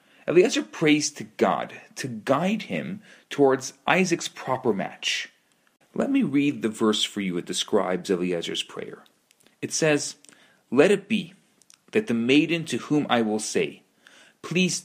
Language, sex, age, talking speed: English, male, 40-59, 145 wpm